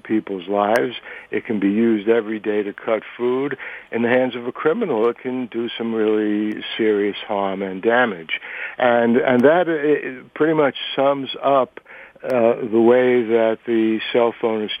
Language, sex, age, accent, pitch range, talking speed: English, male, 60-79, American, 110-125 Hz, 170 wpm